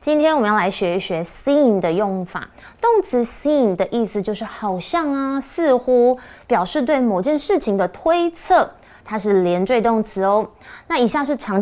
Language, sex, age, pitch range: Chinese, female, 20-39, 195-305 Hz